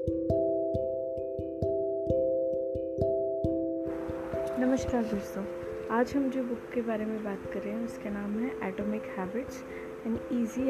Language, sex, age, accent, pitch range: Hindi, female, 20-39, native, 175-245 Hz